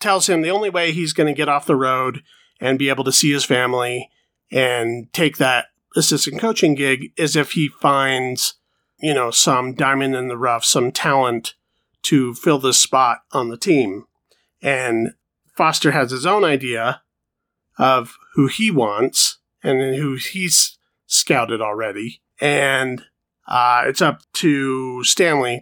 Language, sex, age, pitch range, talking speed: English, male, 40-59, 130-165 Hz, 155 wpm